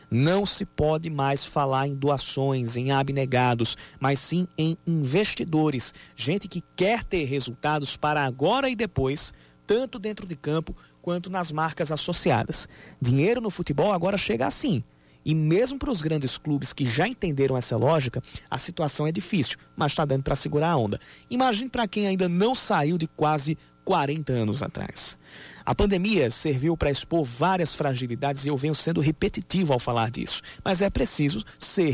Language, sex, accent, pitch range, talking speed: Portuguese, male, Brazilian, 130-175 Hz, 165 wpm